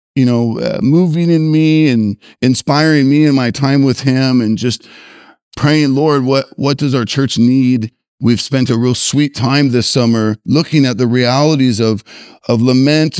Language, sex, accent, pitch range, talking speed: English, male, American, 115-145 Hz, 175 wpm